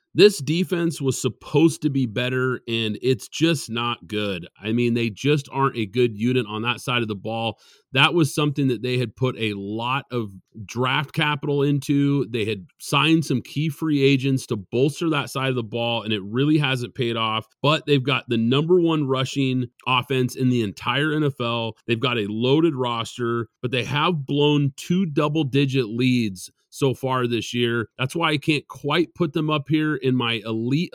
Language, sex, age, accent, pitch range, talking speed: English, male, 30-49, American, 120-150 Hz, 190 wpm